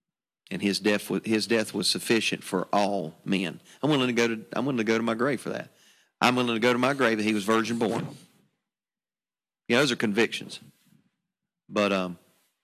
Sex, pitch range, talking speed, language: male, 100-110 Hz, 200 wpm, English